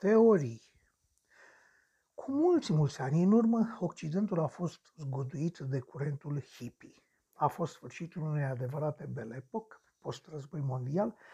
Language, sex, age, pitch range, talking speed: Romanian, male, 60-79, 150-200 Hz, 115 wpm